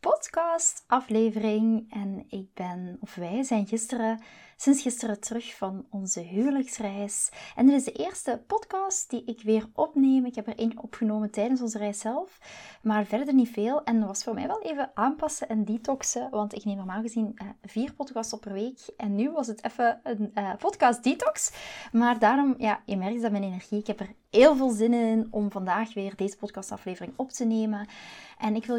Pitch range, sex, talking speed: 205-245 Hz, female, 190 wpm